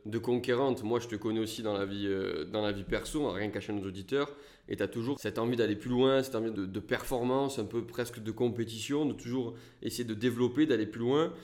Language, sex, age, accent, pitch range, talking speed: French, male, 20-39, French, 105-135 Hz, 235 wpm